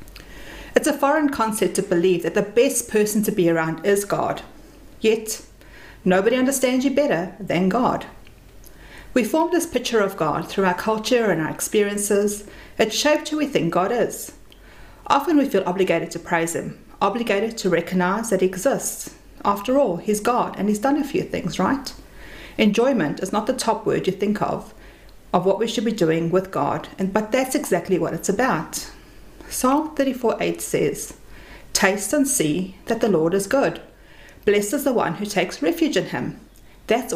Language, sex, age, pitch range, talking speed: English, female, 40-59, 185-260 Hz, 180 wpm